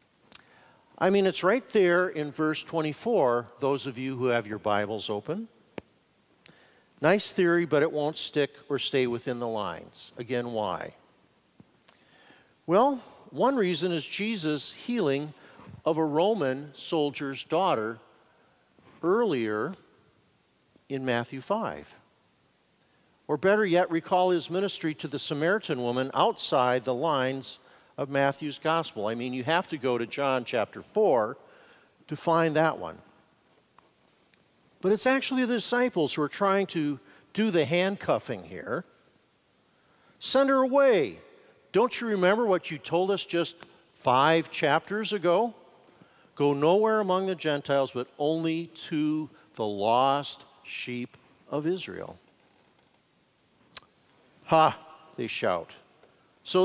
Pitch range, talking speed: 135-185 Hz, 125 wpm